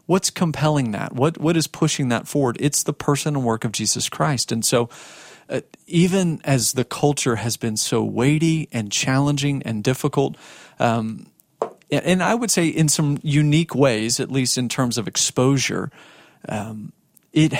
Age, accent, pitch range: 40-59, American, 120-145 Hz